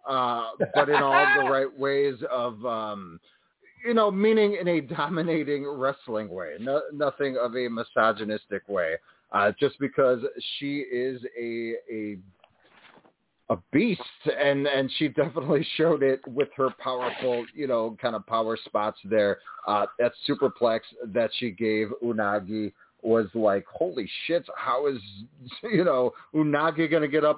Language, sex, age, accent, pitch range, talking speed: English, male, 30-49, American, 110-145 Hz, 150 wpm